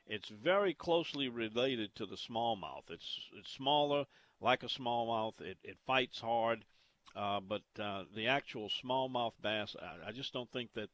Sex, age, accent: male, 50-69, American